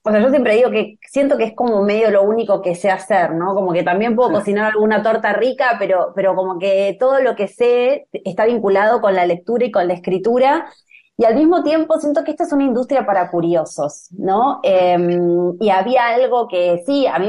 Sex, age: female, 20-39